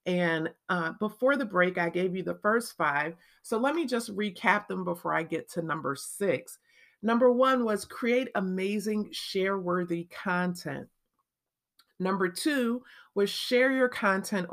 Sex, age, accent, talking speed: female, 40-59, American, 150 wpm